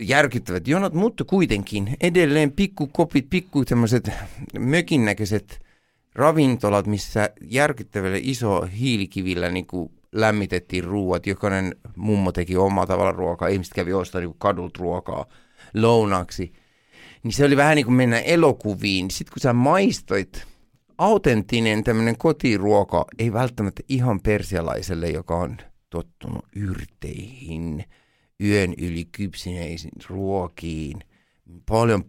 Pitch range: 90-130 Hz